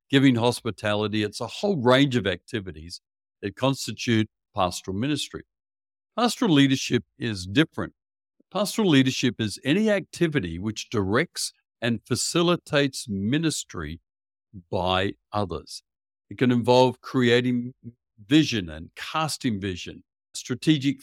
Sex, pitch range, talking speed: male, 100-140 Hz, 105 wpm